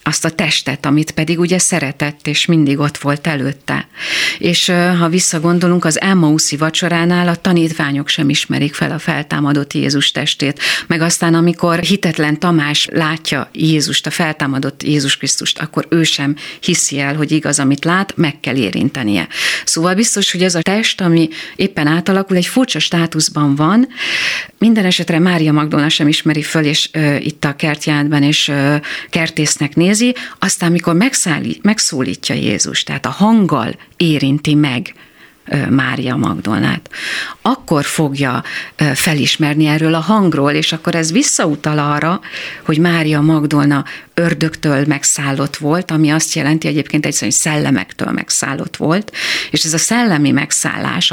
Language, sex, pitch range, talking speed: Hungarian, female, 150-175 Hz, 140 wpm